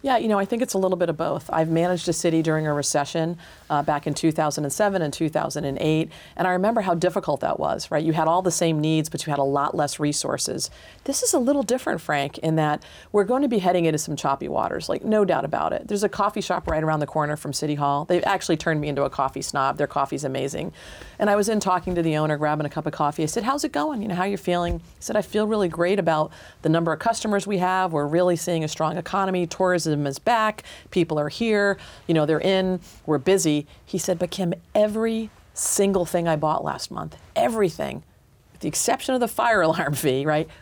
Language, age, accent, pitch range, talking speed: English, 40-59, American, 155-195 Hz, 240 wpm